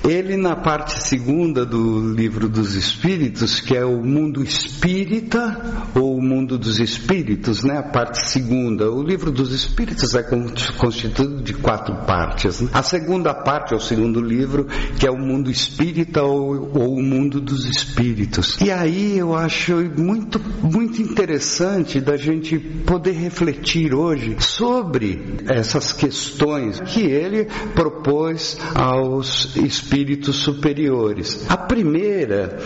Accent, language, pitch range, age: Brazilian, Portuguese, 130-180 Hz, 60-79